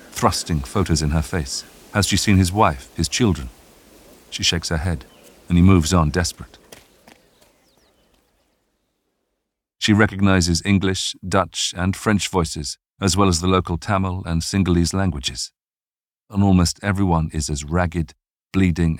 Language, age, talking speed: English, 50-69, 140 wpm